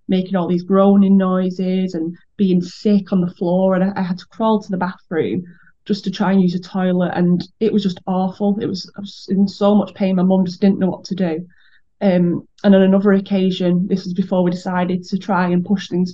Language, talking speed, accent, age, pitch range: English, 235 wpm, British, 20-39, 180-200 Hz